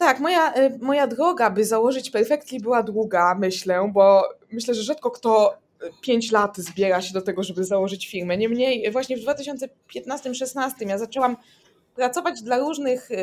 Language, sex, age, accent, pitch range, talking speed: Polish, female, 20-39, native, 210-255 Hz, 150 wpm